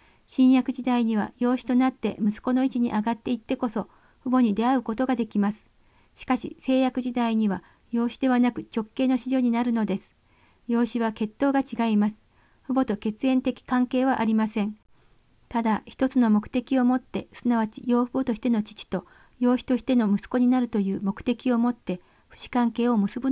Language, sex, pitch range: Japanese, female, 220-250 Hz